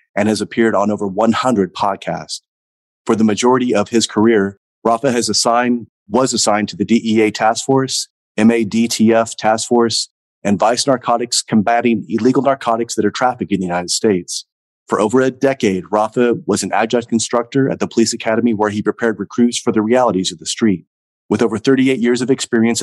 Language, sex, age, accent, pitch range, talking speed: English, male, 30-49, American, 100-120 Hz, 180 wpm